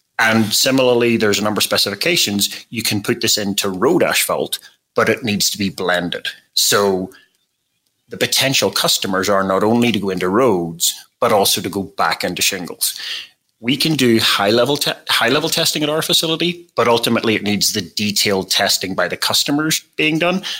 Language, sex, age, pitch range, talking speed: English, male, 30-49, 100-125 Hz, 170 wpm